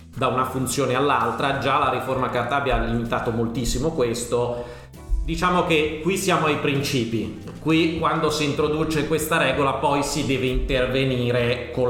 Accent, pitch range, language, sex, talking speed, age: native, 115-140 Hz, Italian, male, 145 wpm, 40-59